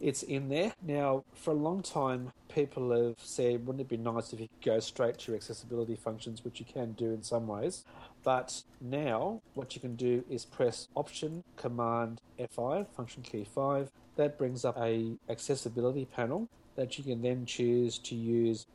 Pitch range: 115-130 Hz